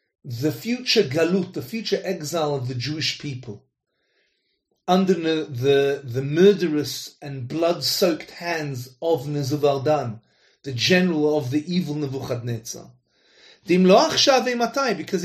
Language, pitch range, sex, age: English, 150-220 Hz, male, 30-49